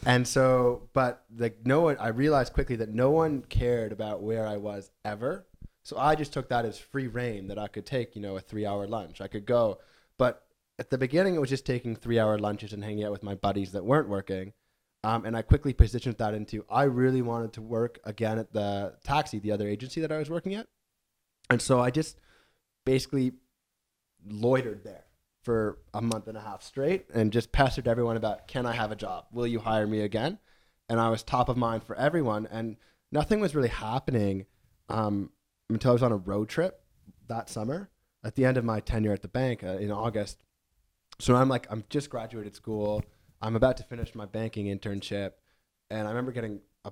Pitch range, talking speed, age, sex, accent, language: 105-125 Hz, 210 wpm, 20-39, male, American, English